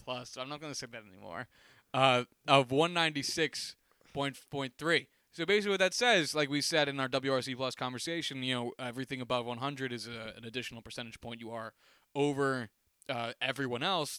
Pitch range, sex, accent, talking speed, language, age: 125-155 Hz, male, American, 190 wpm, English, 20-39